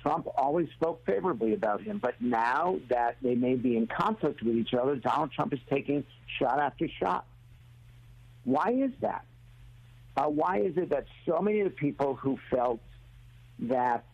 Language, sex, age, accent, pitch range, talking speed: English, male, 60-79, American, 120-145 Hz, 170 wpm